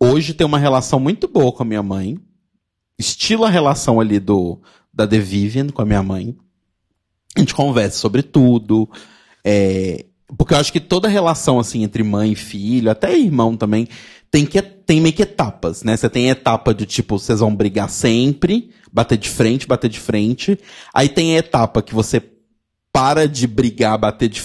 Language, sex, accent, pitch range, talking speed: Portuguese, male, Brazilian, 105-140 Hz, 185 wpm